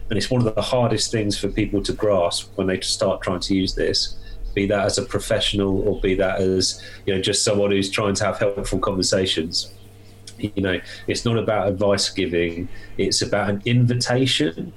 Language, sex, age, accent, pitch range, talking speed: English, male, 30-49, British, 100-120 Hz, 195 wpm